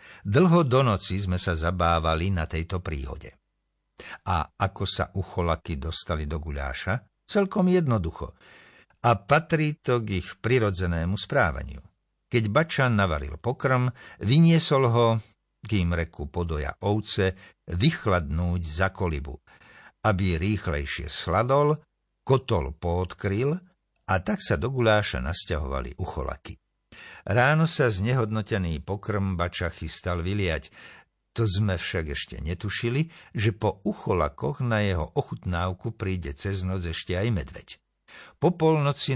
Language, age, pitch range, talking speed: Slovak, 60-79, 85-120 Hz, 115 wpm